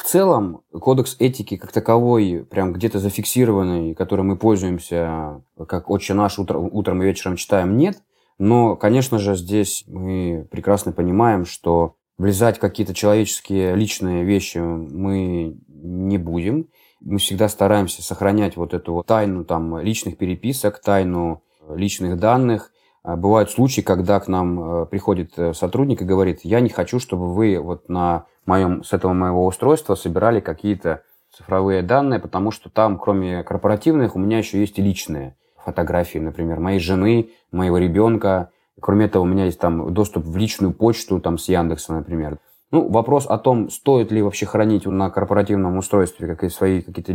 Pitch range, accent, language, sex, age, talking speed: 90-105 Hz, native, Russian, male, 20-39, 150 wpm